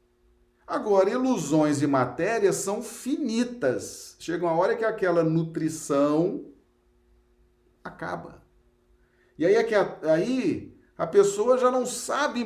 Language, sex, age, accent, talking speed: Portuguese, male, 40-59, Brazilian, 100 wpm